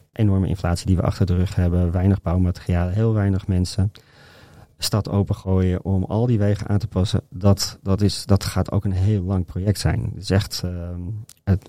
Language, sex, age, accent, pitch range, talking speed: Dutch, male, 40-59, Dutch, 95-110 Hz, 190 wpm